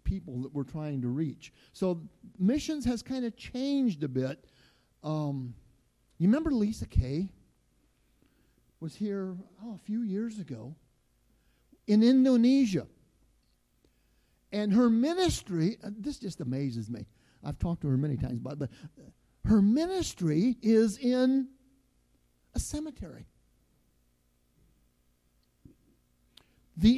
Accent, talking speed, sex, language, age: American, 115 wpm, male, English, 50-69